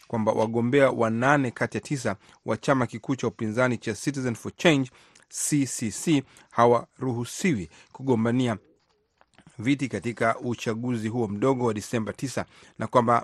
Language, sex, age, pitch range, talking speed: Swahili, male, 40-59, 110-135 Hz, 130 wpm